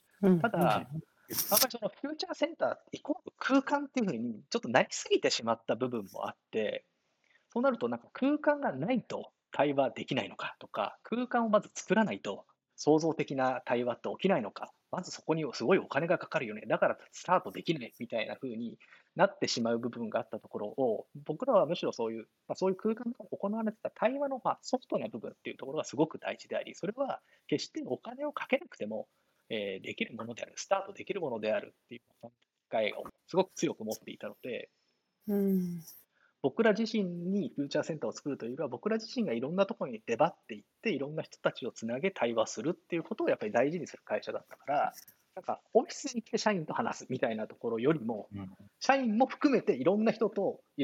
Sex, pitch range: male, 170-265 Hz